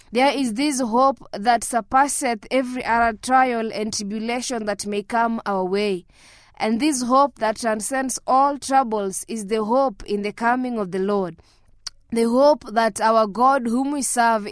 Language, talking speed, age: English, 165 wpm, 20-39